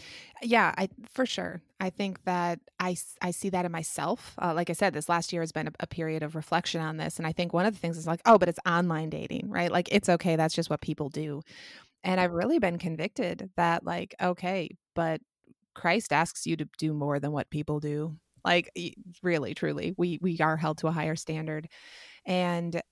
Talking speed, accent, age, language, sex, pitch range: 215 wpm, American, 20-39, English, female, 160-190 Hz